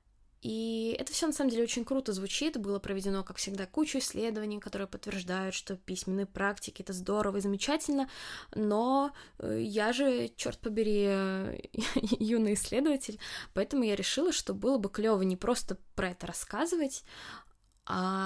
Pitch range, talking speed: 195-245 Hz, 145 wpm